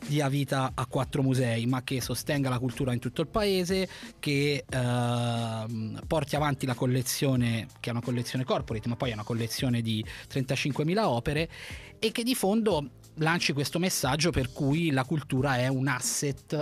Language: Italian